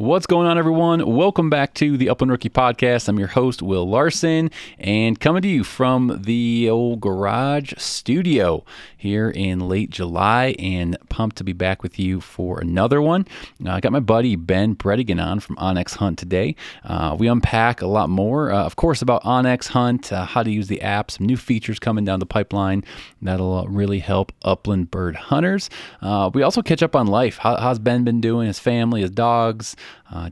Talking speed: 190 wpm